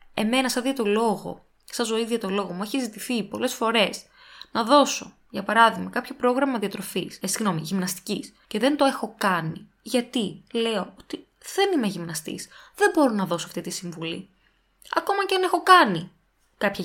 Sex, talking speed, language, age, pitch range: female, 165 wpm, Greek, 20-39, 200-295 Hz